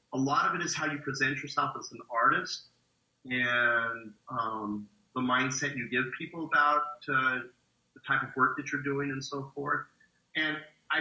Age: 30-49